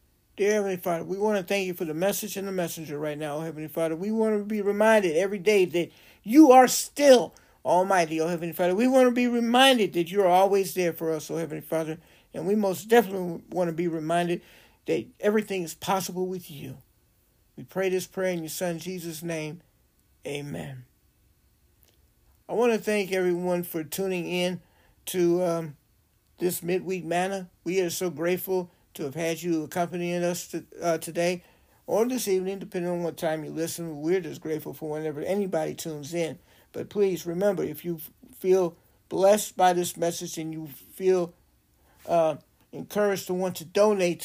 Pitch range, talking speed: 160-185 Hz, 185 wpm